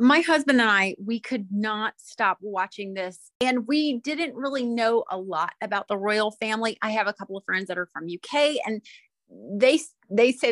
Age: 30-49